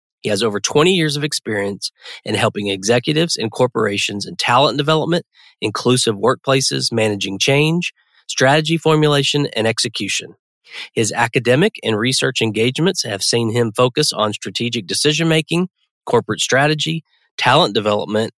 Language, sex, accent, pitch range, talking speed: English, male, American, 110-145 Hz, 125 wpm